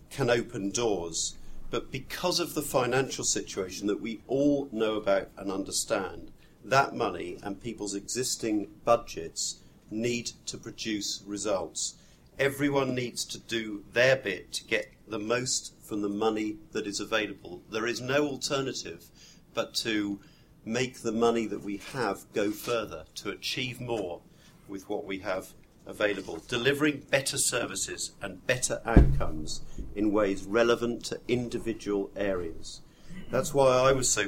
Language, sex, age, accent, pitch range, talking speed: English, male, 50-69, British, 100-135 Hz, 140 wpm